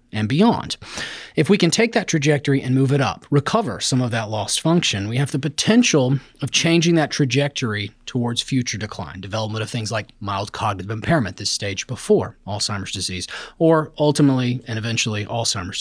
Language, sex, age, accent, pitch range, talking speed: English, male, 30-49, American, 115-165 Hz, 175 wpm